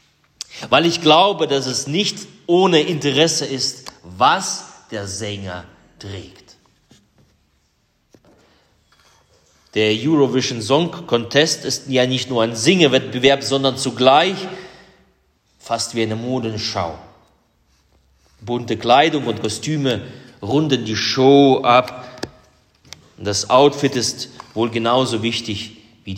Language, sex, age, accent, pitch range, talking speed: German, male, 30-49, German, 100-135 Hz, 100 wpm